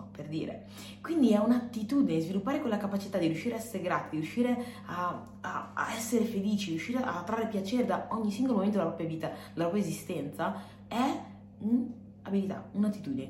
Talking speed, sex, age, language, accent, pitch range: 160 wpm, female, 20-39, Italian, native, 160-225 Hz